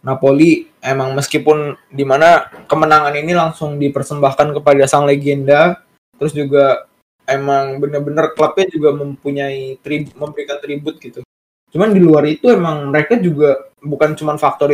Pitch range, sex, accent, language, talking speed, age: 130-150 Hz, male, native, Indonesian, 130 wpm, 20-39